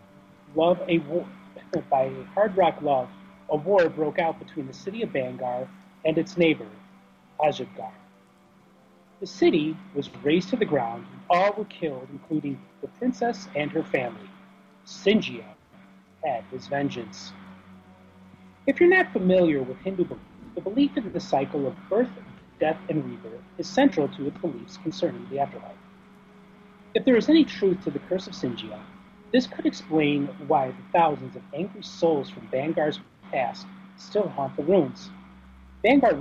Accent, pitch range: American, 135-200 Hz